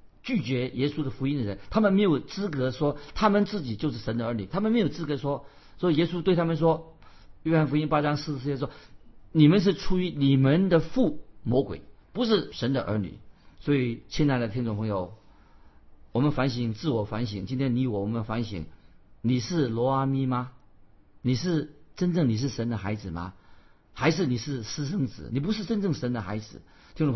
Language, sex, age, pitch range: Chinese, male, 50-69, 110-150 Hz